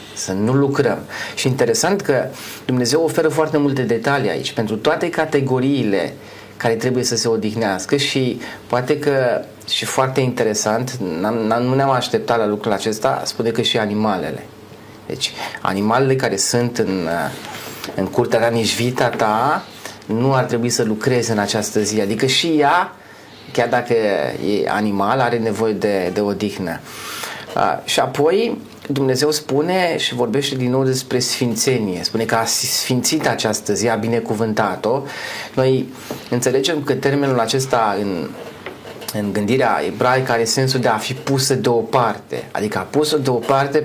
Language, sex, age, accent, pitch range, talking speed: Romanian, male, 30-49, native, 110-140 Hz, 140 wpm